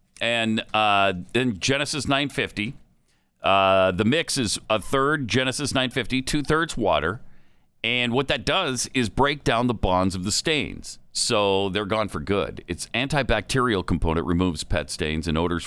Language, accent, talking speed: English, American, 155 wpm